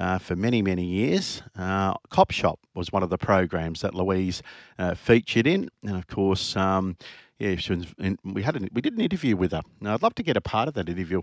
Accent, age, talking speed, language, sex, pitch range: Australian, 50-69, 240 wpm, English, male, 95-125 Hz